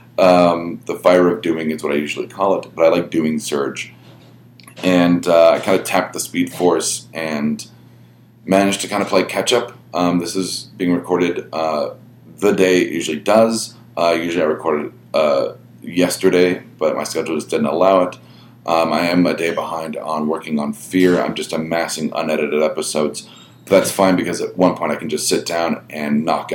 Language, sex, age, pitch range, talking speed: English, male, 30-49, 75-95 Hz, 195 wpm